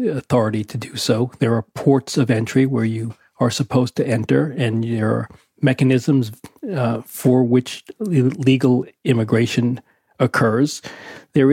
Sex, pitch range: male, 115-140 Hz